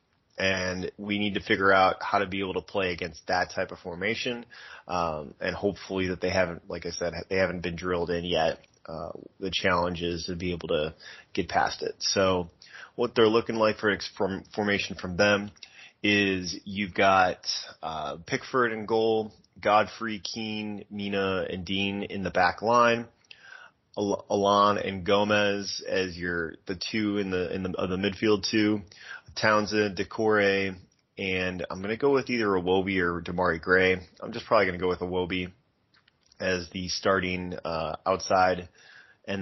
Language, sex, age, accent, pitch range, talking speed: English, male, 20-39, American, 90-105 Hz, 175 wpm